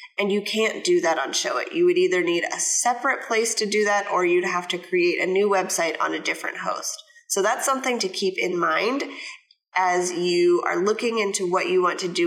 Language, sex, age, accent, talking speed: English, female, 20-39, American, 230 wpm